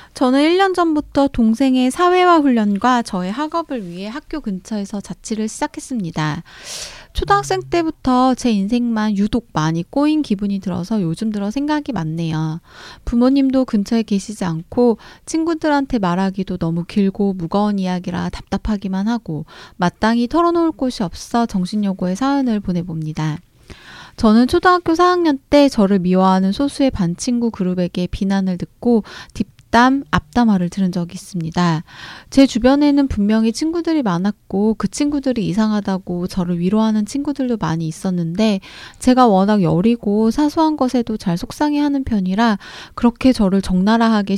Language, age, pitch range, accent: Korean, 20-39, 185-265 Hz, native